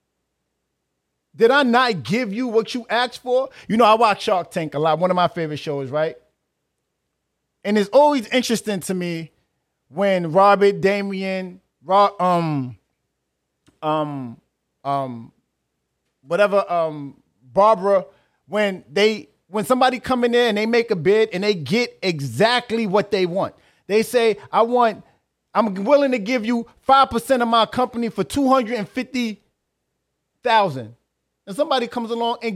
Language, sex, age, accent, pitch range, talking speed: English, male, 30-49, American, 190-255 Hz, 140 wpm